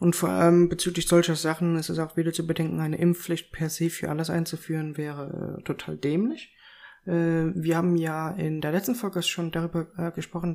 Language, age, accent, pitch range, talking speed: German, 20-39, German, 165-185 Hz, 180 wpm